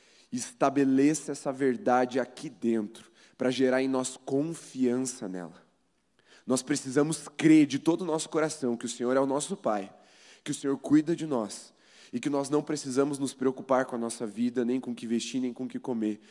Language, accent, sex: Portuguese, Brazilian, male